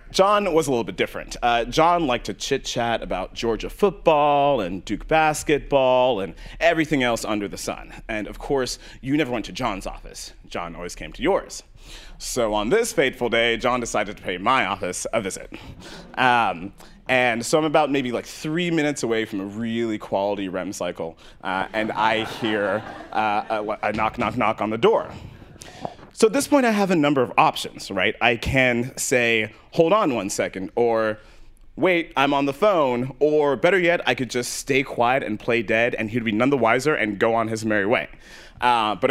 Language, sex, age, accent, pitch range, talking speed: English, male, 30-49, American, 110-150 Hz, 195 wpm